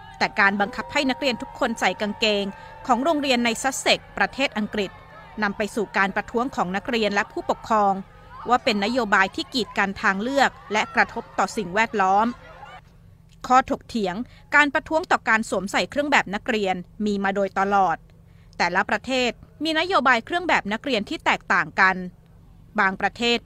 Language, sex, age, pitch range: Thai, female, 20-39, 200-255 Hz